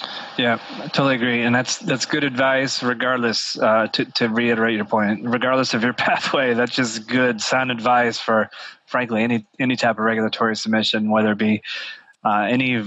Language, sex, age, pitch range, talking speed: English, male, 20-39, 115-125 Hz, 175 wpm